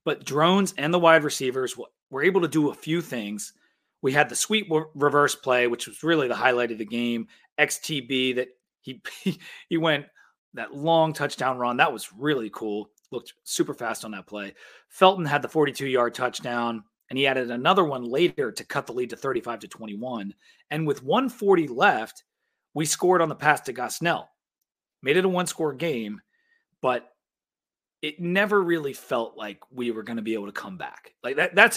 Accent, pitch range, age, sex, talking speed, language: American, 130-180 Hz, 30-49, male, 190 wpm, English